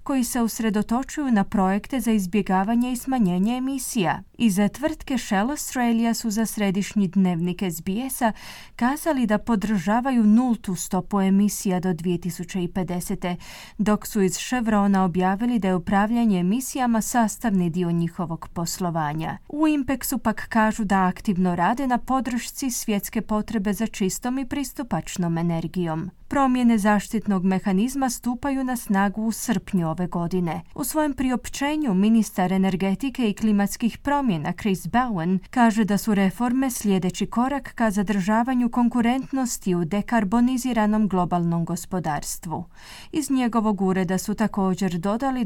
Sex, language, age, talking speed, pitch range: female, Croatian, 30-49, 125 wpm, 190-245 Hz